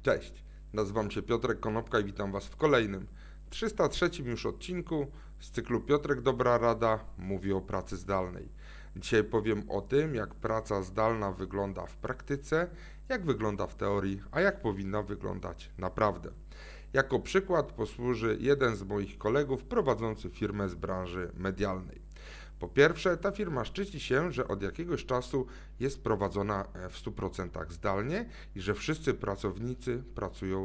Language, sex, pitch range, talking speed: Polish, male, 100-145 Hz, 145 wpm